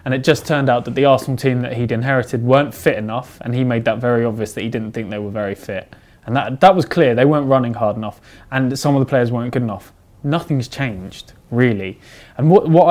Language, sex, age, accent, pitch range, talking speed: English, male, 20-39, British, 115-145 Hz, 245 wpm